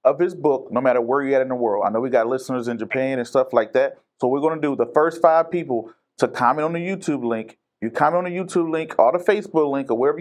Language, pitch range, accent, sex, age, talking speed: English, 125-175 Hz, American, male, 30-49, 290 wpm